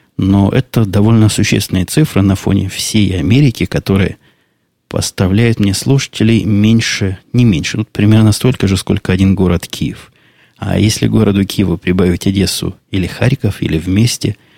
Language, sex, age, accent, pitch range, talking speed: Russian, male, 20-39, native, 90-110 Hz, 140 wpm